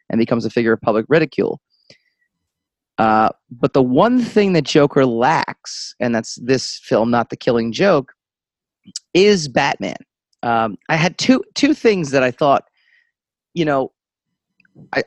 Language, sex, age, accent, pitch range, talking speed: English, male, 30-49, American, 120-165 Hz, 145 wpm